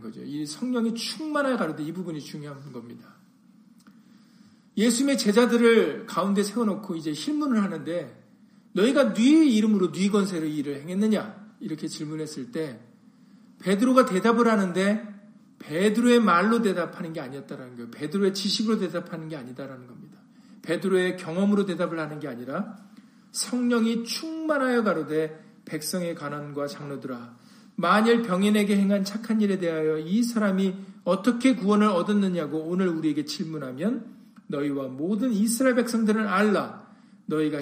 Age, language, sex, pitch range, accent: 40-59, Korean, male, 165-225 Hz, native